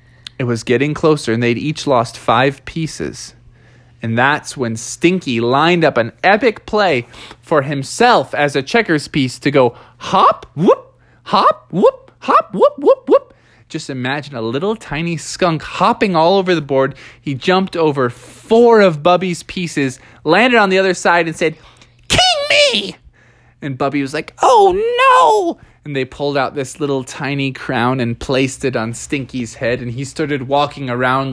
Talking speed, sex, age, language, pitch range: 165 wpm, male, 20-39, English, 130-190 Hz